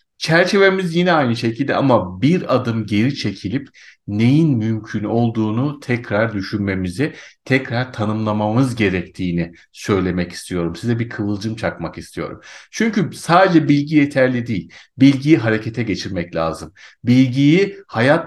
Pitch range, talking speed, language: 105-140 Hz, 115 wpm, Turkish